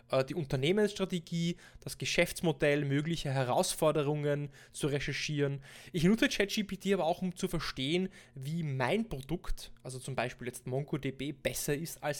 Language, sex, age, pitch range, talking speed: German, male, 20-39, 140-185 Hz, 135 wpm